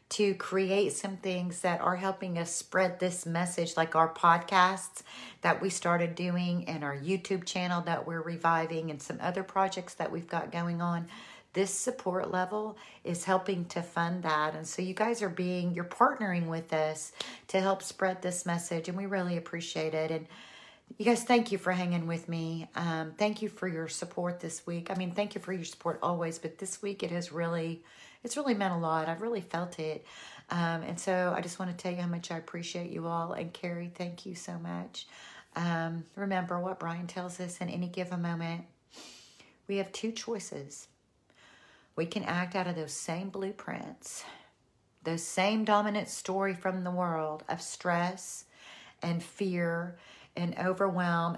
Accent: American